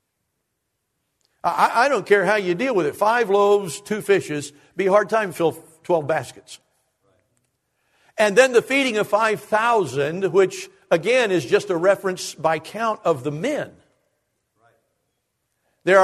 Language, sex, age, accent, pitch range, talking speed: English, male, 60-79, American, 150-220 Hz, 140 wpm